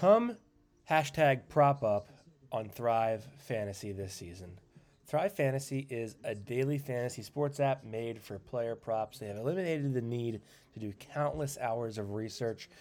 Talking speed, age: 150 wpm, 20-39